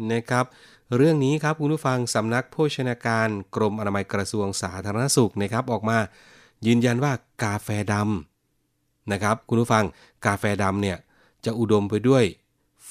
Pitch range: 95-120 Hz